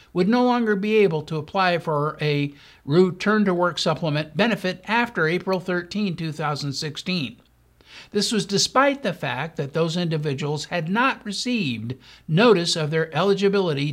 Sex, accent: male, American